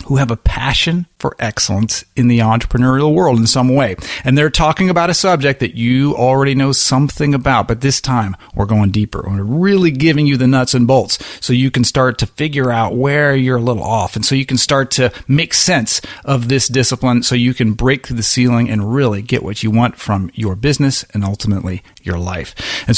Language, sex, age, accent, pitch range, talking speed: English, male, 40-59, American, 115-145 Hz, 215 wpm